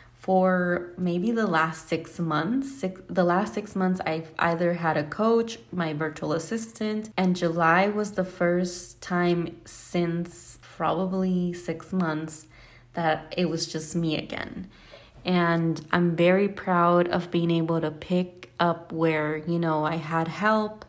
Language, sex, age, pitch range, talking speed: English, female, 20-39, 165-190 Hz, 145 wpm